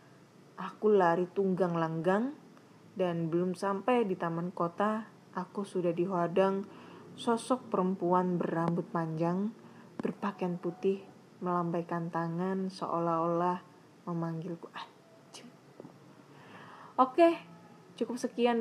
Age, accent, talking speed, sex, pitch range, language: 20-39, native, 85 wpm, female, 170-215 Hz, Indonesian